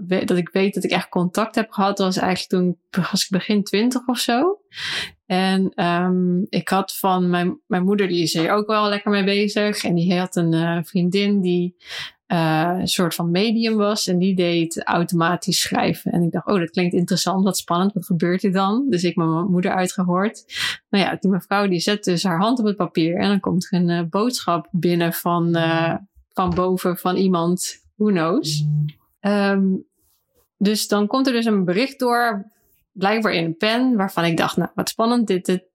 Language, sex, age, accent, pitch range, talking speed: Dutch, female, 20-39, Dutch, 175-210 Hz, 195 wpm